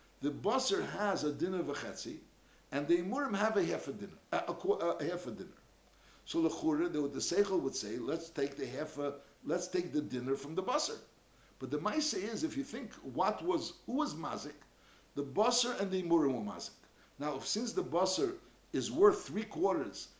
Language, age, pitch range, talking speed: English, 60-79, 140-215 Hz, 195 wpm